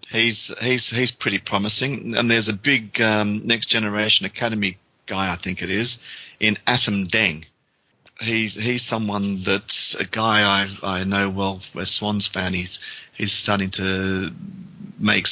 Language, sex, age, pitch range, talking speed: English, male, 40-59, 95-115 Hz, 155 wpm